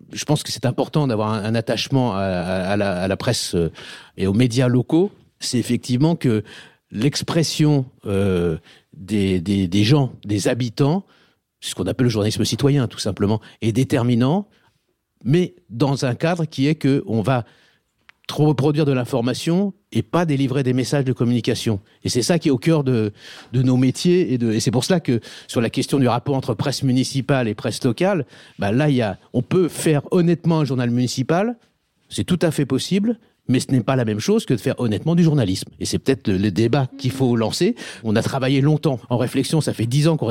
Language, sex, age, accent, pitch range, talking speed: French, male, 50-69, French, 115-150 Hz, 200 wpm